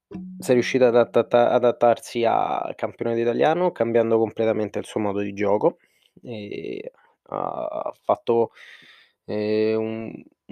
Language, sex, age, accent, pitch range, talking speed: Italian, male, 20-39, native, 115-125 Hz, 115 wpm